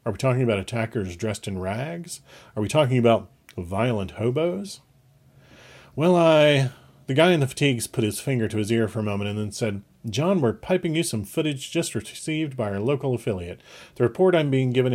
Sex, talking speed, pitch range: male, 200 wpm, 105-140 Hz